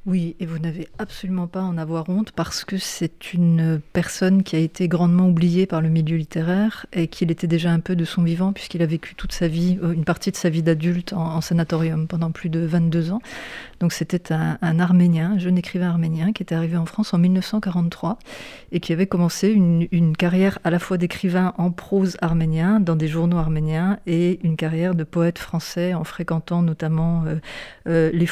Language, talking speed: French, 205 wpm